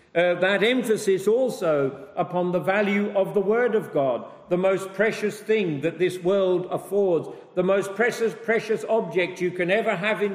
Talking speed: 175 wpm